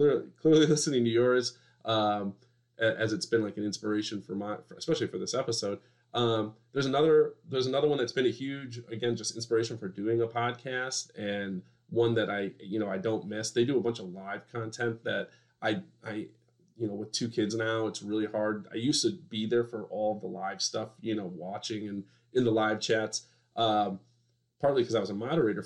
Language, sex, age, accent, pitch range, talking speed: English, male, 30-49, American, 105-120 Hz, 205 wpm